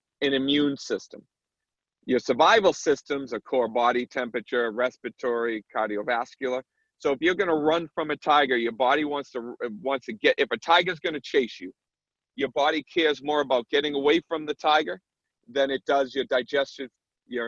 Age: 40-59